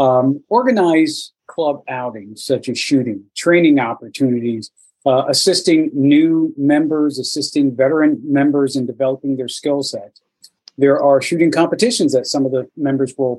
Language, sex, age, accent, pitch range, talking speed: English, male, 40-59, American, 130-160 Hz, 140 wpm